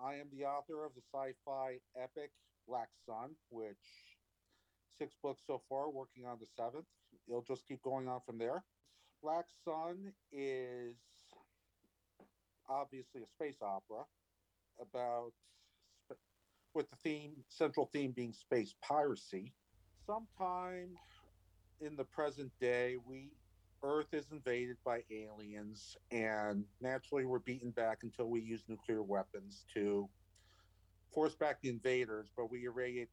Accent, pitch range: American, 95-135 Hz